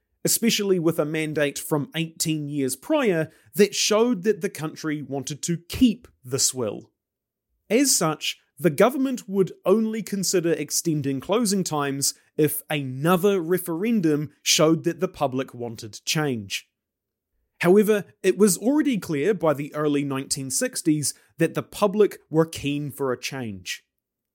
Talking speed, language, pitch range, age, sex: 135 wpm, English, 135-190 Hz, 30-49, male